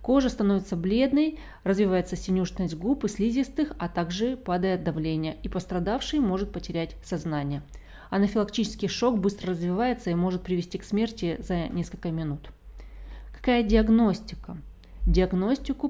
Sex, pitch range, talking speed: female, 170-225 Hz, 120 wpm